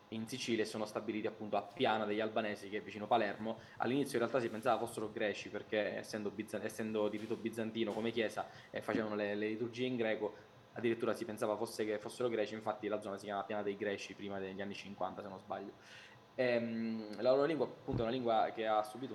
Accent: native